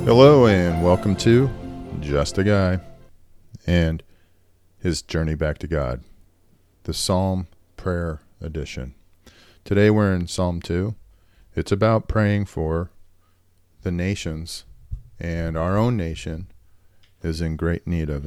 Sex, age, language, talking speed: male, 40-59, English, 120 wpm